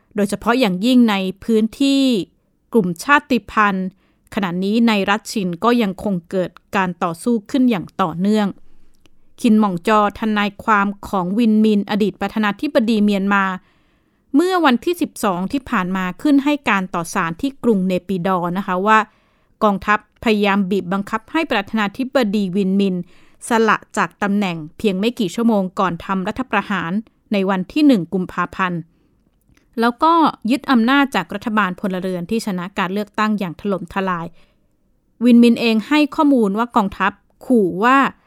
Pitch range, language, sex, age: 190-240 Hz, Thai, female, 20-39